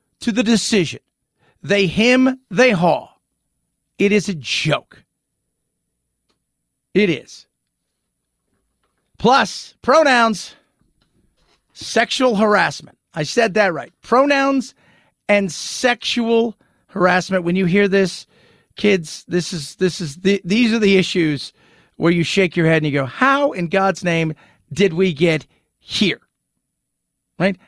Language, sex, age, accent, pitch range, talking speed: English, male, 40-59, American, 155-215 Hz, 120 wpm